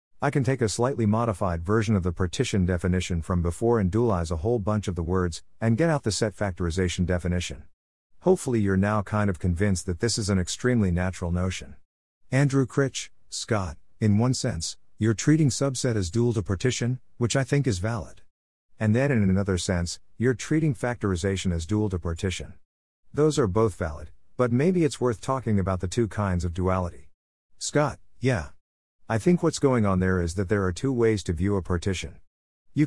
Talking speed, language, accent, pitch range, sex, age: 190 wpm, English, American, 90-120 Hz, male, 50-69